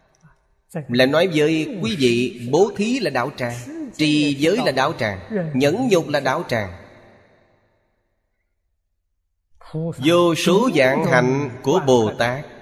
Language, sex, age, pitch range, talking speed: Vietnamese, male, 30-49, 105-145 Hz, 130 wpm